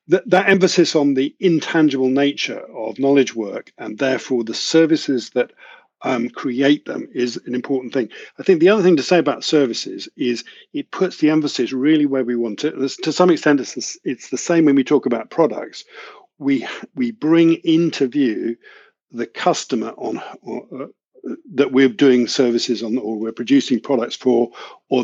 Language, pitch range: Polish, 125-180 Hz